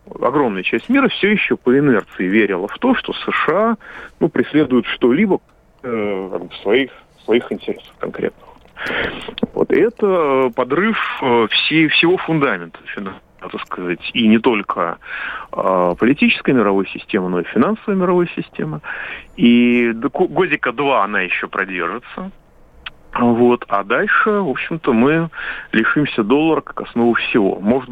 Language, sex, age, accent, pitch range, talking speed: Russian, male, 40-59, native, 105-155 Hz, 135 wpm